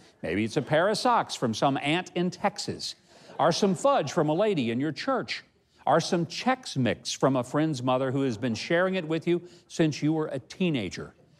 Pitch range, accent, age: 120-185 Hz, American, 50-69